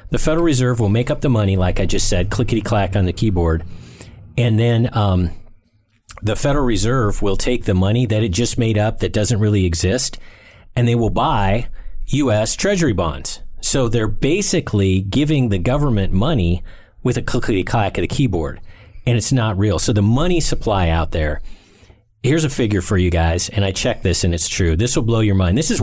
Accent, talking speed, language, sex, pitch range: American, 200 wpm, English, male, 95-125 Hz